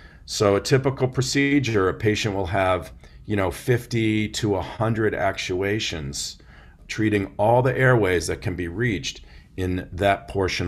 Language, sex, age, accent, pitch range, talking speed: English, male, 40-59, American, 85-105 Hz, 140 wpm